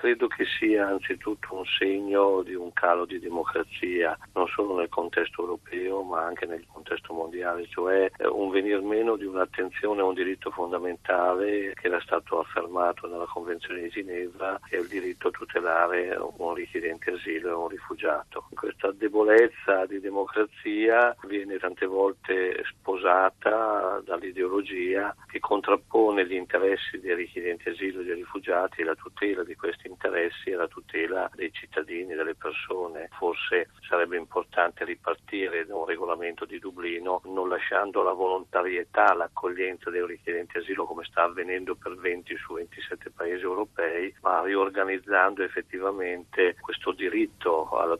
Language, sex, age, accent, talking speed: Italian, male, 50-69, native, 145 wpm